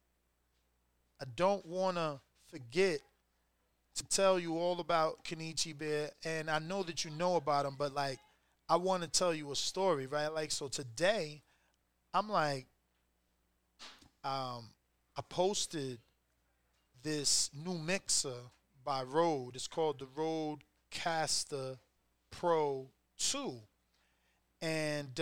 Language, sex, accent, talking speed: English, male, American, 120 wpm